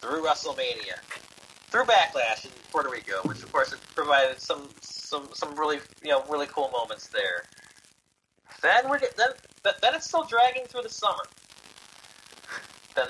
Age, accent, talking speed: 30-49, American, 150 wpm